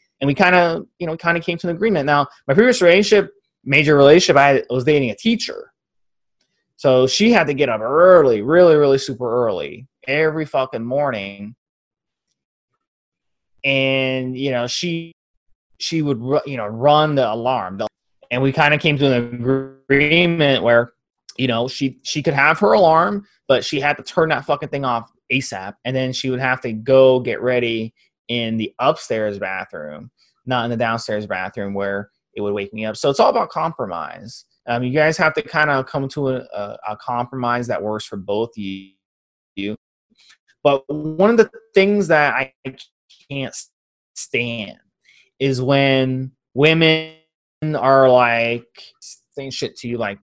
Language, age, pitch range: English, 20-39, 120-155 Hz